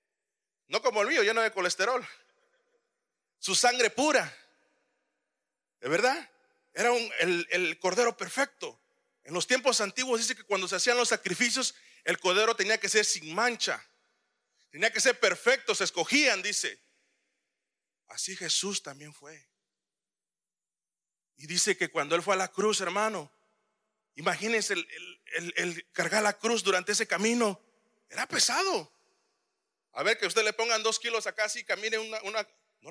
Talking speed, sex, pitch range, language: 155 wpm, male, 185-240 Hz, Spanish